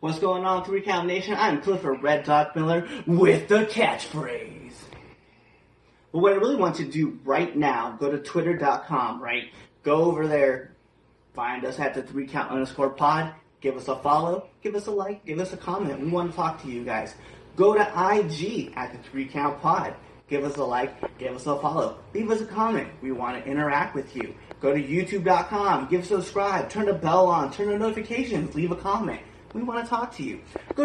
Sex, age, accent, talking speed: male, 30-49, American, 205 wpm